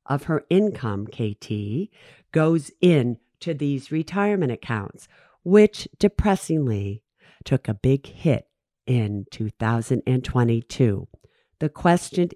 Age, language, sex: 50-69, English, female